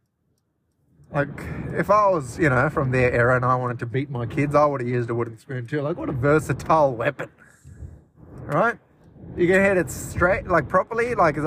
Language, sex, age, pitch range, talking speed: English, male, 20-39, 130-160 Hz, 205 wpm